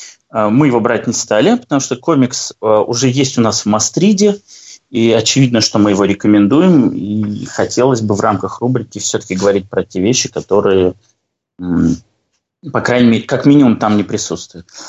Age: 20-39